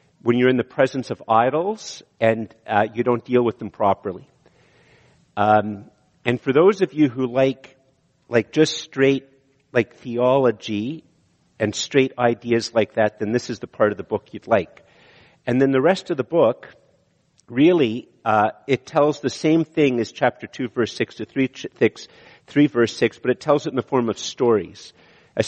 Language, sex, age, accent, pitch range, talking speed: English, male, 50-69, American, 110-135 Hz, 180 wpm